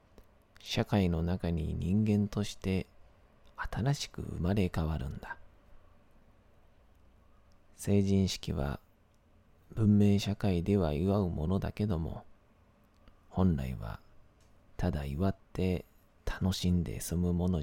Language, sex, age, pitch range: Japanese, male, 40-59, 85-100 Hz